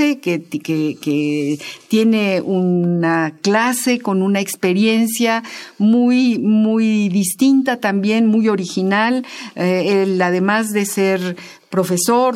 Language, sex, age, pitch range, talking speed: Spanish, female, 50-69, 185-250 Hz, 90 wpm